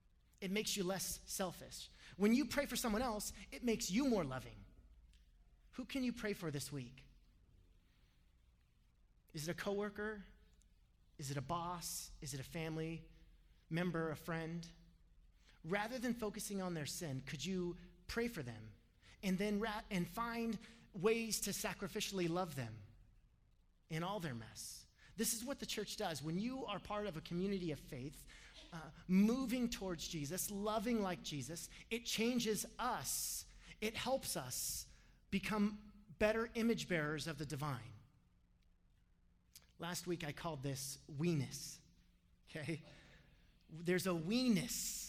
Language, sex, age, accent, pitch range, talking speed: English, male, 30-49, American, 145-210 Hz, 145 wpm